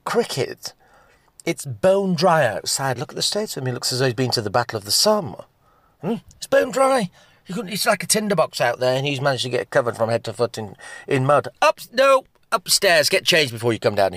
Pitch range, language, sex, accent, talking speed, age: 110-160 Hz, English, male, British, 250 wpm, 40-59